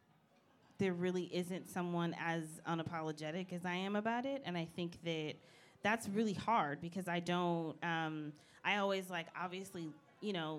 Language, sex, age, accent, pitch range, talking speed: English, female, 20-39, American, 160-185 Hz, 160 wpm